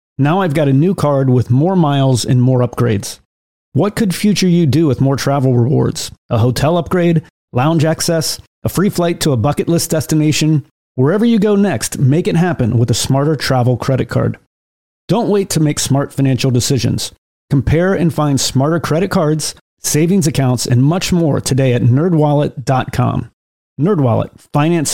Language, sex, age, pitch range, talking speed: English, male, 30-49, 125-160 Hz, 170 wpm